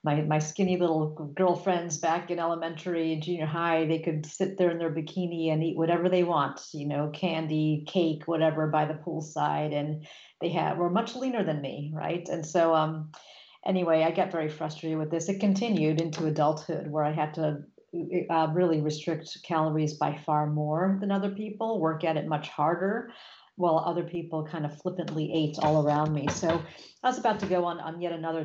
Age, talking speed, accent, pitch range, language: 50-69, 195 wpm, American, 155-180 Hz, English